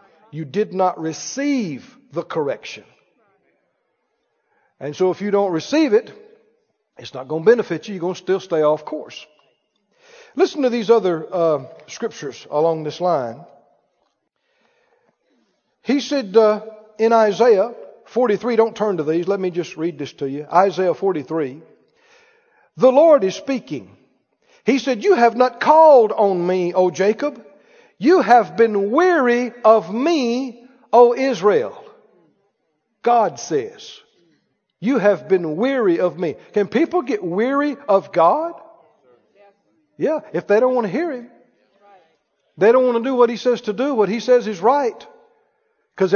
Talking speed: 150 wpm